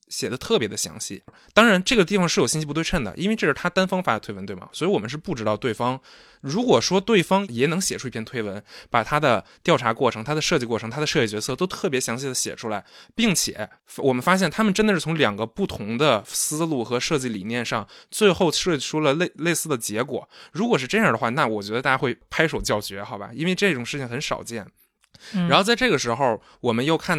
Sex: male